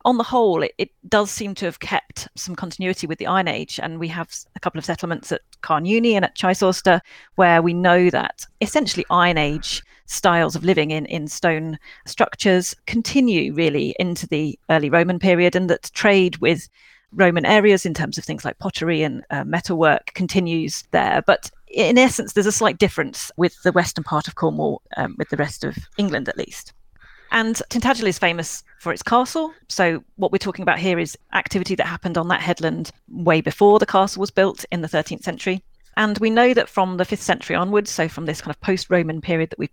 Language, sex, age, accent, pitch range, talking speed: English, female, 40-59, British, 170-205 Hz, 205 wpm